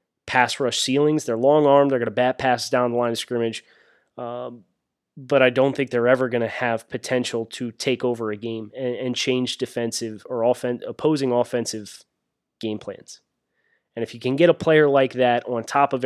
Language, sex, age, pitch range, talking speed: English, male, 20-39, 120-145 Hz, 200 wpm